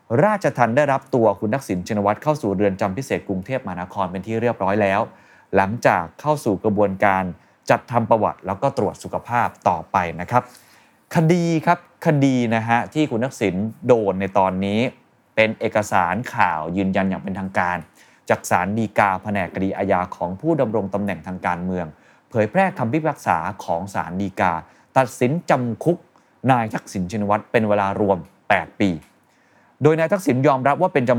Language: Thai